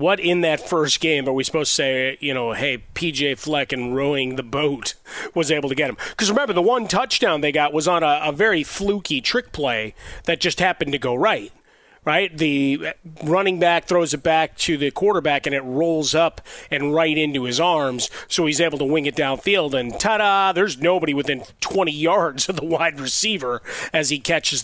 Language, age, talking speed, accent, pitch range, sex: English, 30-49, 205 wpm, American, 135-165 Hz, male